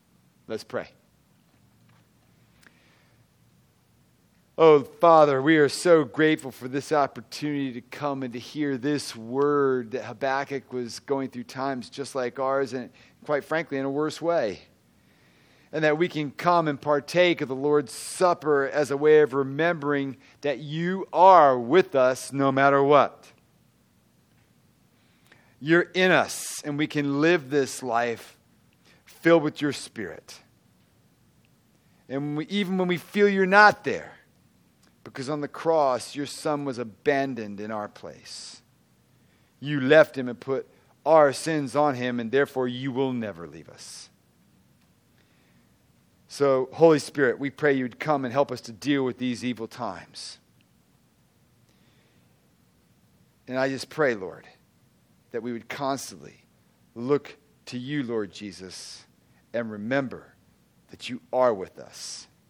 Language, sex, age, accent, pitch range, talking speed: English, male, 40-59, American, 125-150 Hz, 140 wpm